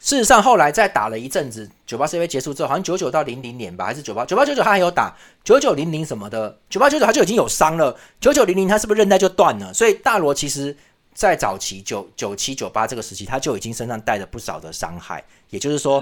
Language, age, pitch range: Chinese, 30-49, 105-160 Hz